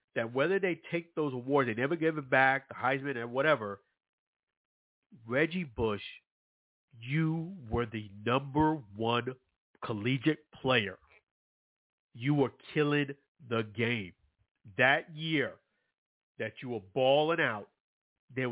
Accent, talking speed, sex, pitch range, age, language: American, 120 wpm, male, 115-145 Hz, 50-69, English